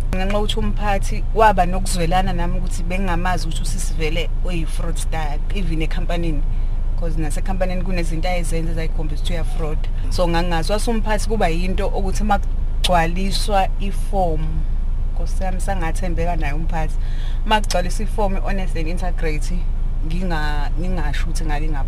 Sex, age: female, 30-49